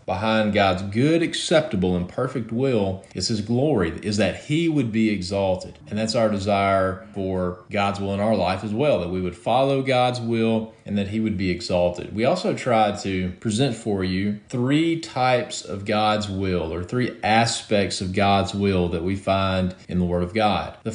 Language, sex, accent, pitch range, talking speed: English, male, American, 95-130 Hz, 190 wpm